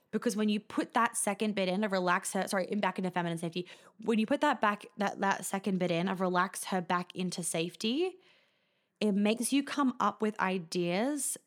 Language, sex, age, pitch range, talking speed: English, female, 20-39, 180-215 Hz, 210 wpm